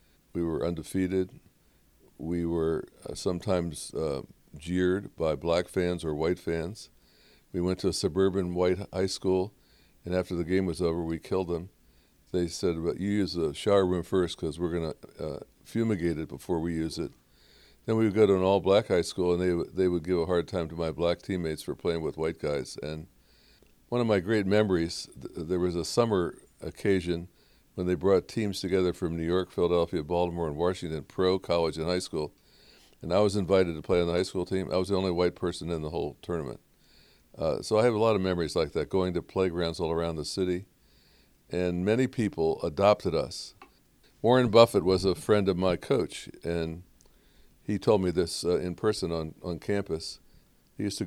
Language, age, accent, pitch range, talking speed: English, 60-79, American, 85-95 Hz, 200 wpm